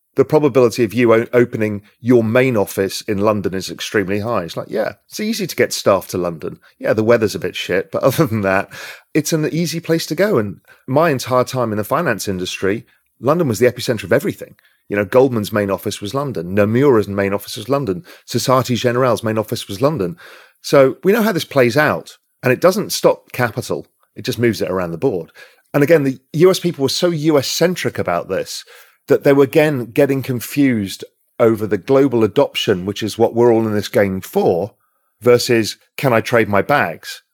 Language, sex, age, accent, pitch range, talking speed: English, male, 40-59, British, 110-145 Hz, 200 wpm